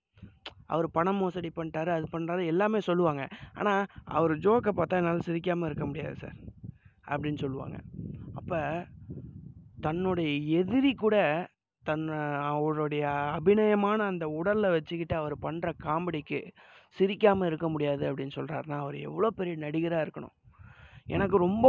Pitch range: 145-185 Hz